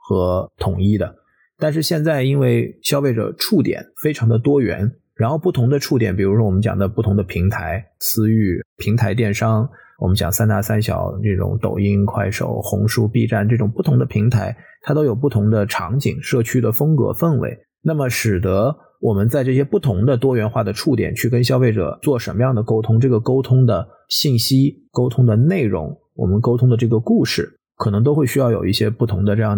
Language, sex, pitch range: Chinese, male, 100-125 Hz